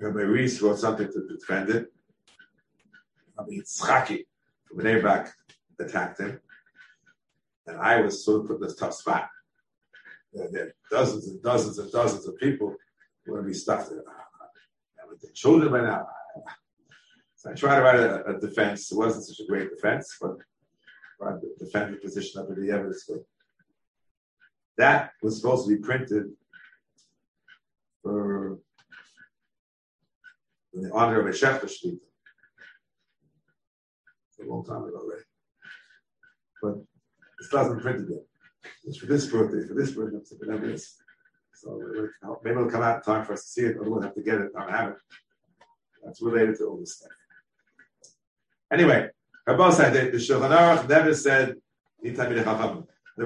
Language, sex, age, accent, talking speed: Hebrew, male, 50-69, American, 160 wpm